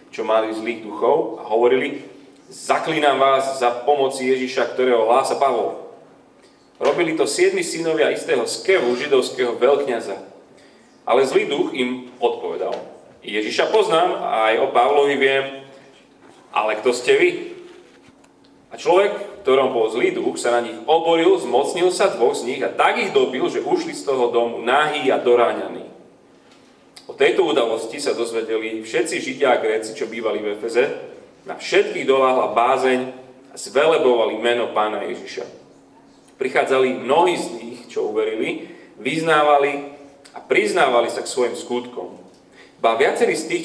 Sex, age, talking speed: male, 30-49, 145 wpm